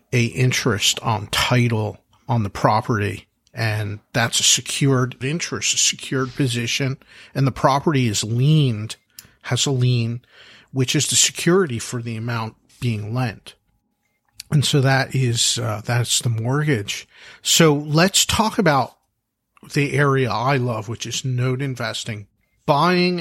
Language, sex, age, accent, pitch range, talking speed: English, male, 50-69, American, 115-145 Hz, 135 wpm